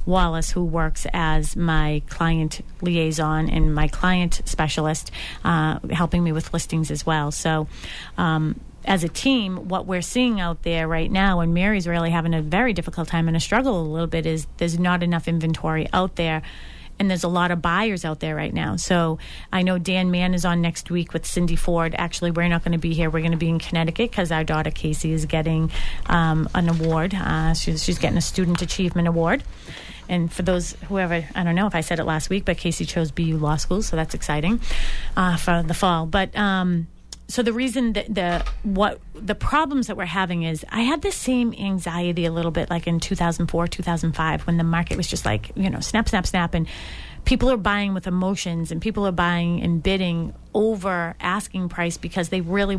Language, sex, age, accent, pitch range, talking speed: English, female, 30-49, American, 165-190 Hz, 210 wpm